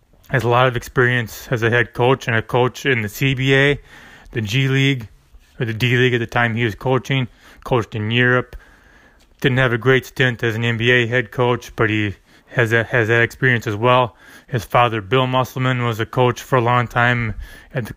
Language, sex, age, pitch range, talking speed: English, male, 20-39, 115-130 Hz, 205 wpm